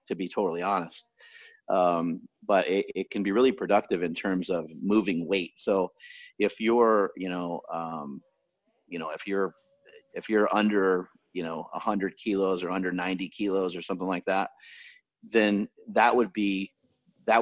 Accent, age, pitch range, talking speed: American, 30-49, 90-120 Hz, 160 wpm